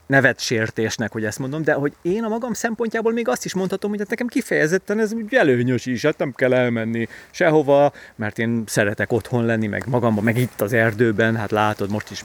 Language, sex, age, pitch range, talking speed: Hungarian, male, 30-49, 110-165 Hz, 195 wpm